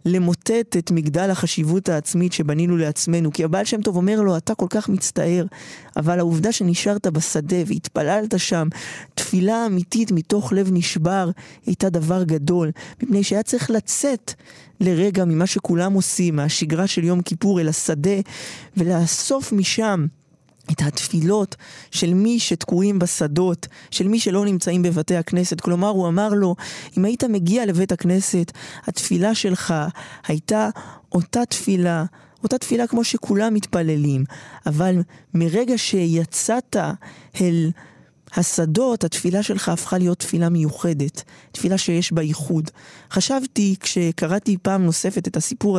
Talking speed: 130 wpm